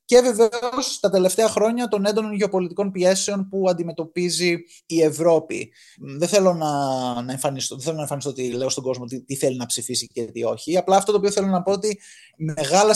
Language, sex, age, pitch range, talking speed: Greek, male, 20-39, 145-190 Hz, 185 wpm